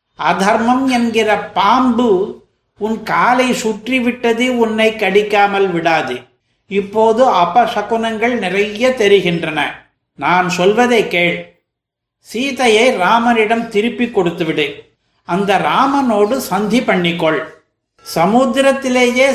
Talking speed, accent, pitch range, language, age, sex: 80 wpm, native, 185-235 Hz, Tamil, 50-69, male